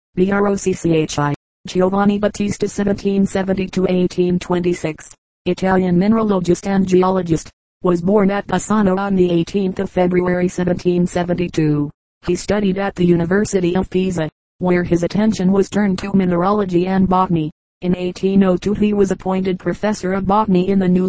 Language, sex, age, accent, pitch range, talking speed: English, female, 30-49, American, 180-195 Hz, 130 wpm